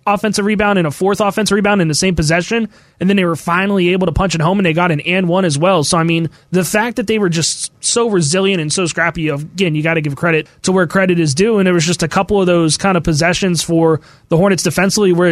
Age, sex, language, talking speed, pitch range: 20-39, male, English, 280 wpm, 165-195 Hz